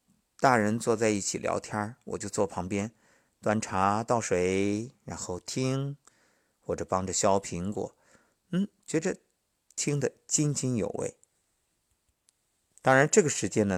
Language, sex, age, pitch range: Chinese, male, 50-69, 90-125 Hz